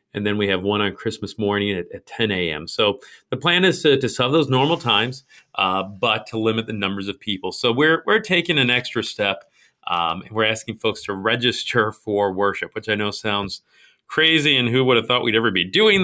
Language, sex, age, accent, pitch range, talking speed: English, male, 40-59, American, 105-135 Hz, 225 wpm